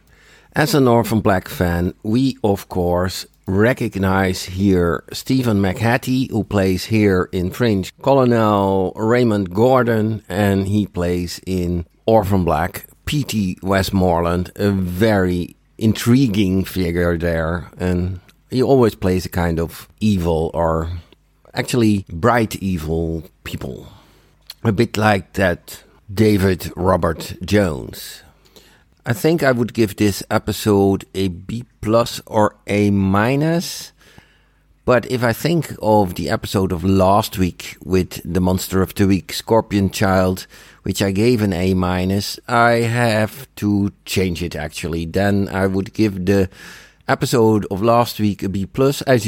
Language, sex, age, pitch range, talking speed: English, male, 50-69, 90-110 Hz, 135 wpm